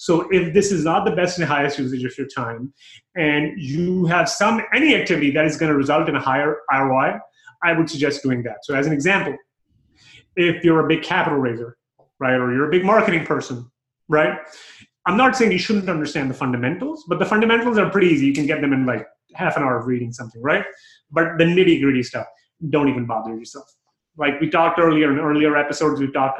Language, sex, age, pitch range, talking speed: English, male, 30-49, 130-175 Hz, 215 wpm